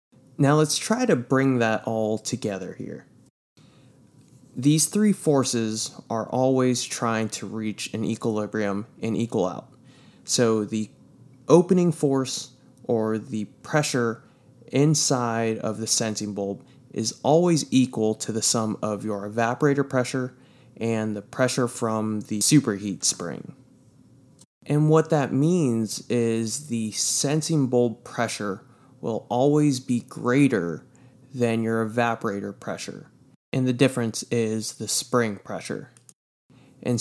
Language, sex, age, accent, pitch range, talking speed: English, male, 20-39, American, 110-130 Hz, 125 wpm